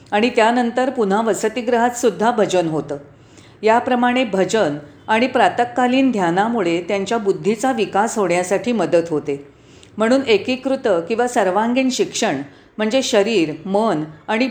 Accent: native